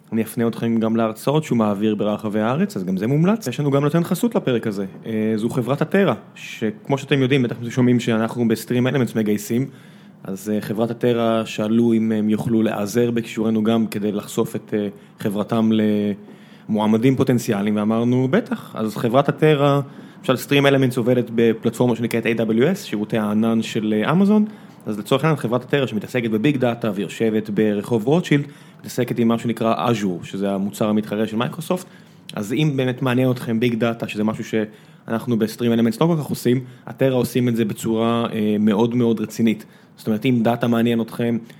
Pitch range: 110-135 Hz